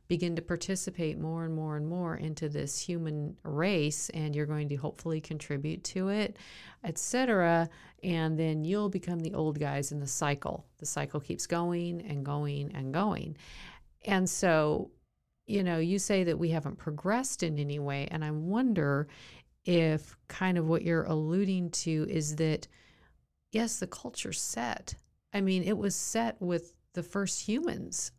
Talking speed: 165 wpm